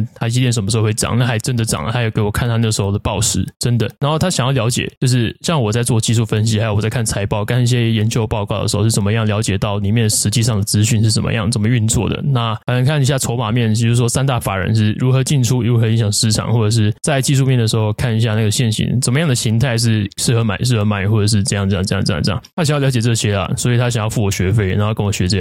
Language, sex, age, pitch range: Chinese, male, 20-39, 110-130 Hz